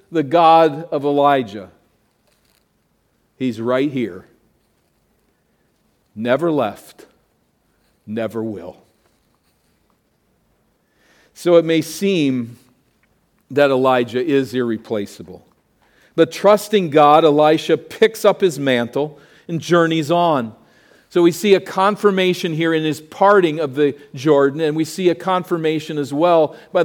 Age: 50-69